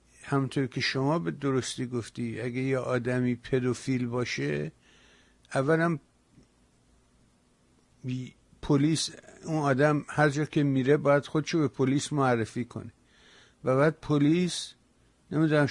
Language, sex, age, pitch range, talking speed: Persian, male, 50-69, 120-140 Hz, 115 wpm